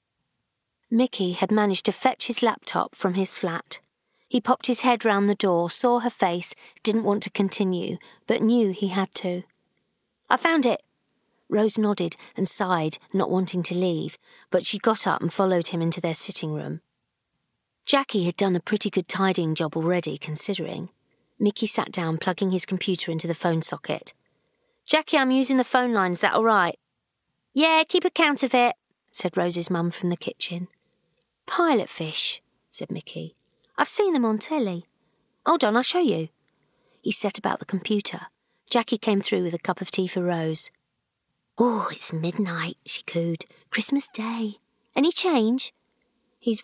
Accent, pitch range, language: British, 175-225 Hz, English